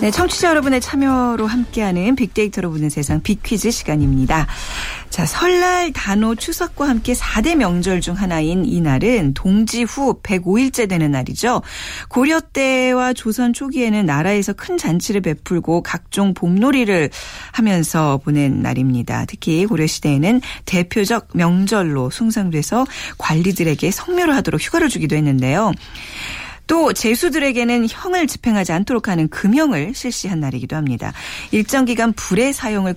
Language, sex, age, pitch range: Korean, female, 40-59, 160-255 Hz